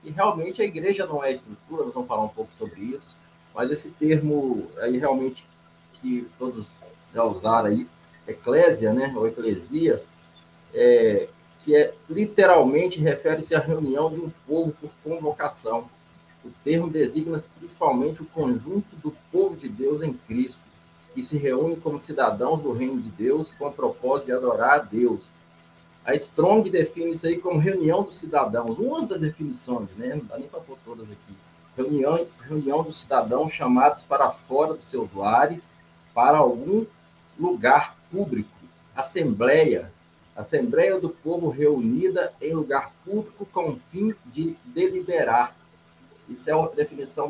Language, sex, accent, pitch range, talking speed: Portuguese, male, Brazilian, 125-200 Hz, 150 wpm